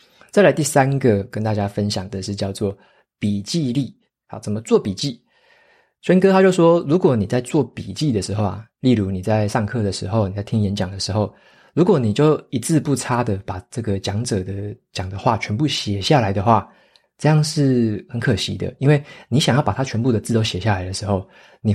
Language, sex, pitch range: Chinese, male, 100-125 Hz